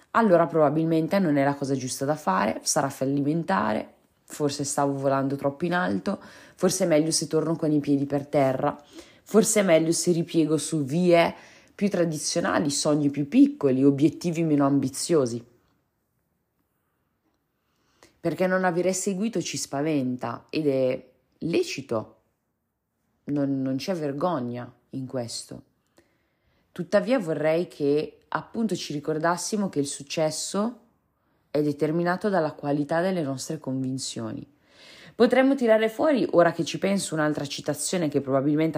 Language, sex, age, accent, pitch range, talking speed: Italian, female, 30-49, native, 140-175 Hz, 130 wpm